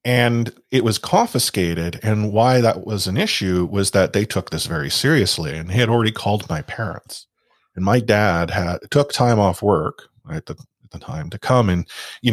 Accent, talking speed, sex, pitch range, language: American, 195 wpm, male, 95-115 Hz, English